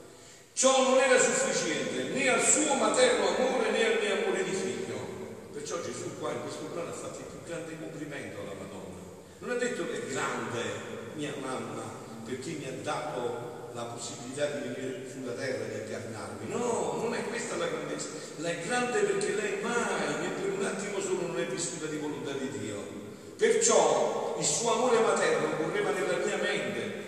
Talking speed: 185 wpm